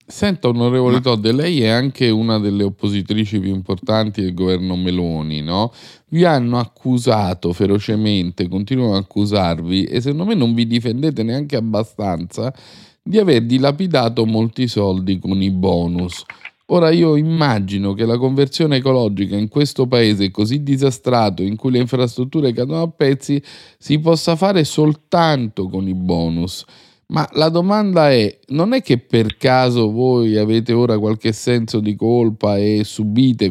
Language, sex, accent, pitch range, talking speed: Italian, male, native, 95-125 Hz, 145 wpm